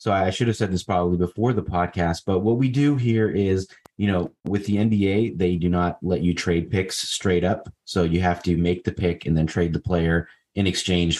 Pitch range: 85-100 Hz